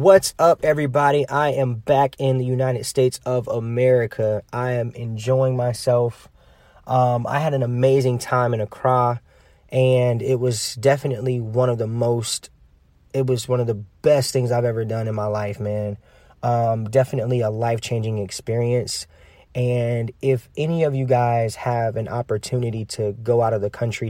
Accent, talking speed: American, 165 wpm